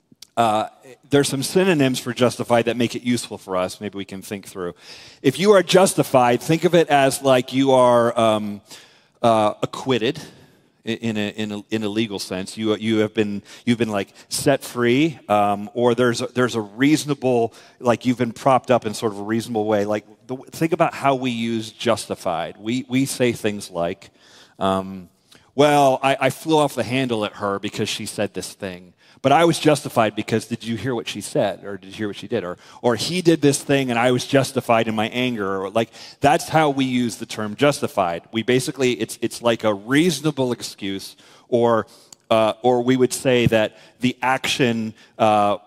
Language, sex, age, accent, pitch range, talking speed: English, male, 40-59, American, 105-130 Hz, 200 wpm